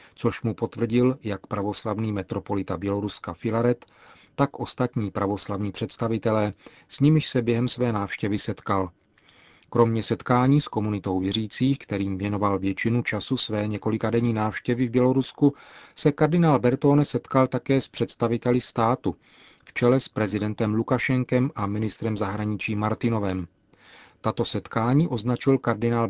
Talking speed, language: 125 wpm, Czech